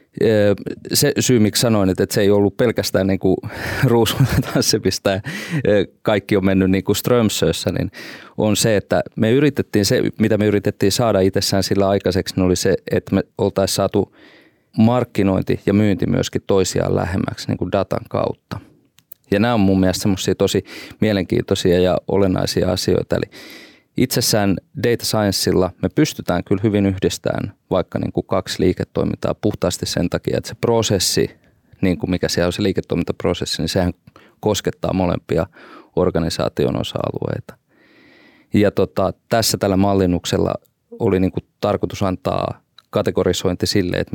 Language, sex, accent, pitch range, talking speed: Finnish, male, native, 95-110 Hz, 145 wpm